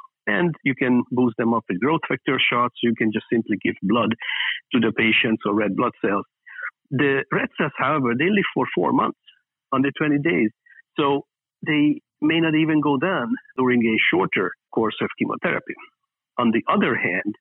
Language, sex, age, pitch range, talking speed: English, male, 50-69, 115-145 Hz, 180 wpm